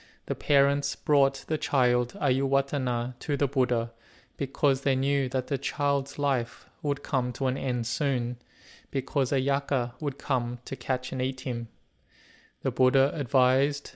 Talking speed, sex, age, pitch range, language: 145 wpm, male, 20-39, 125-140 Hz, English